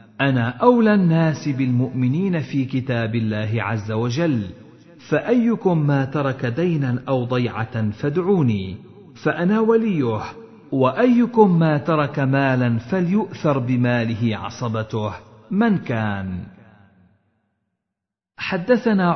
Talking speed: 90 wpm